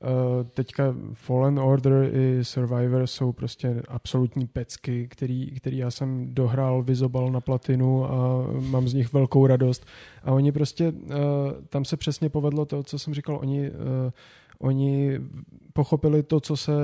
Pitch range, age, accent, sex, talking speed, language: 125-135 Hz, 20-39, native, male, 145 wpm, Czech